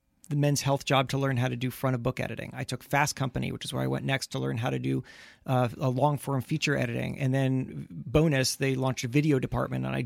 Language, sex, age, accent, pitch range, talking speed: English, male, 30-49, American, 130-155 Hz, 265 wpm